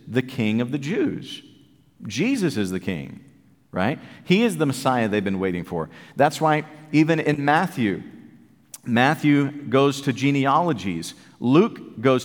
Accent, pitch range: American, 120-155 Hz